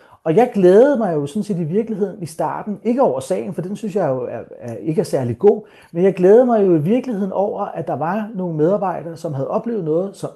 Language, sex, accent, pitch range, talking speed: Danish, male, native, 160-215 Hz, 255 wpm